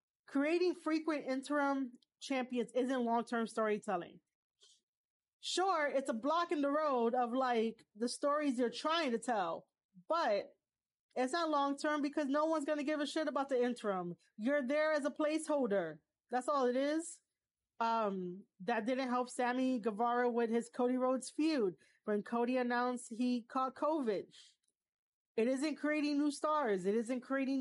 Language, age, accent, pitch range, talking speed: English, 30-49, American, 235-290 Hz, 155 wpm